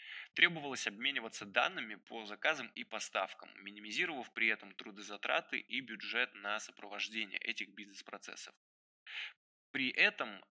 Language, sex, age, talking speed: Russian, male, 20-39, 110 wpm